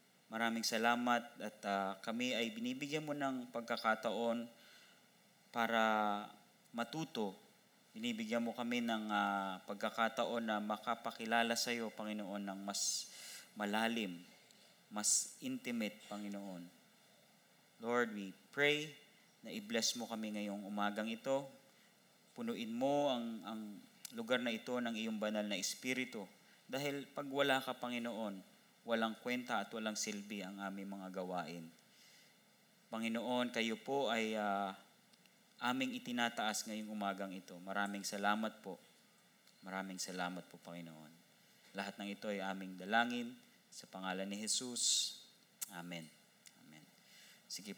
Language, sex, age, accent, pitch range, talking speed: Filipino, male, 20-39, native, 100-135 Hz, 120 wpm